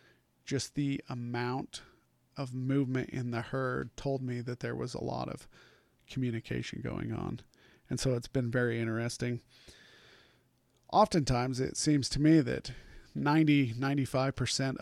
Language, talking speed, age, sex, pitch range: English, 130 wpm, 40-59, male, 120-135 Hz